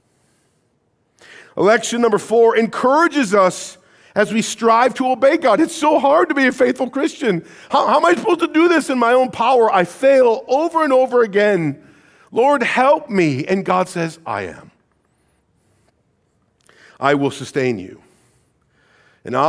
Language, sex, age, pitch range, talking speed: English, male, 50-69, 140-235 Hz, 155 wpm